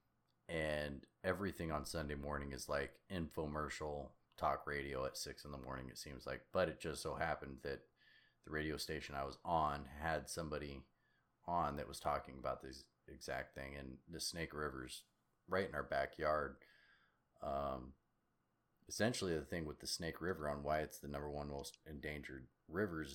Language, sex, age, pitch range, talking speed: English, male, 30-49, 70-85 Hz, 170 wpm